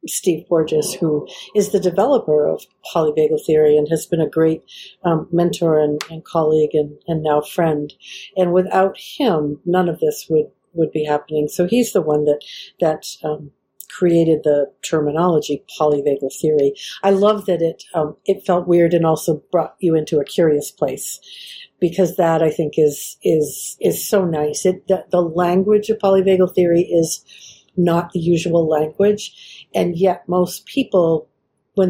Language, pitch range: English, 160-195 Hz